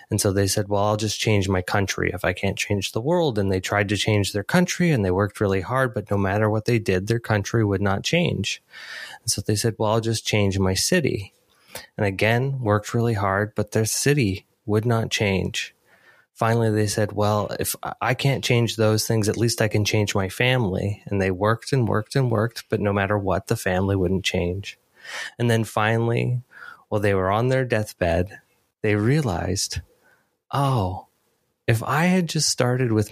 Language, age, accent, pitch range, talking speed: English, 20-39, American, 100-120 Hz, 200 wpm